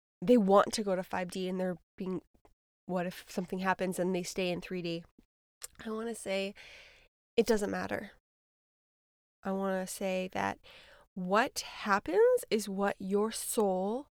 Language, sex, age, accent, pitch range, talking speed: English, female, 20-39, American, 195-255 Hz, 155 wpm